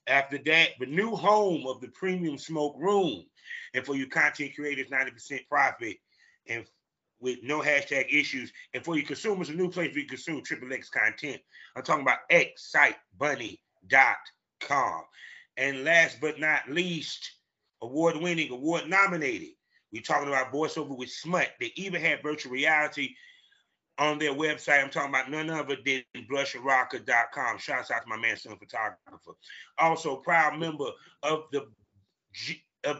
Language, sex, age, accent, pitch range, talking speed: English, male, 30-49, American, 135-175 Hz, 145 wpm